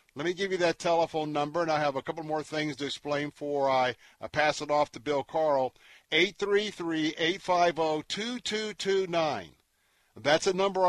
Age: 50-69